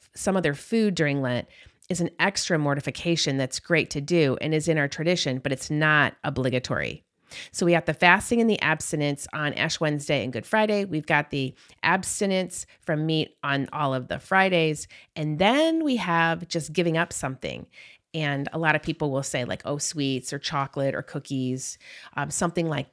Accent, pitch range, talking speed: American, 140-175 Hz, 190 wpm